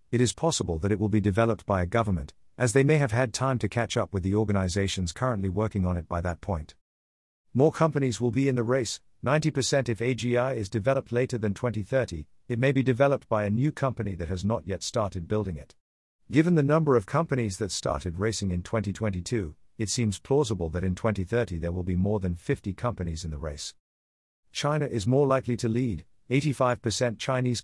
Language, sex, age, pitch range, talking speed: English, male, 50-69, 90-125 Hz, 205 wpm